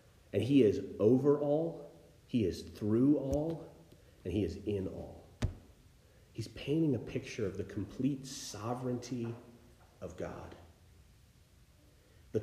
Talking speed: 120 wpm